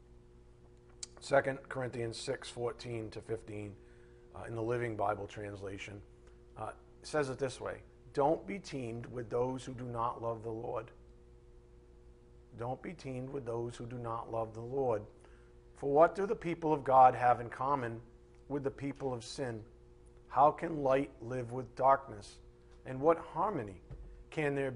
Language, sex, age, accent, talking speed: English, male, 50-69, American, 155 wpm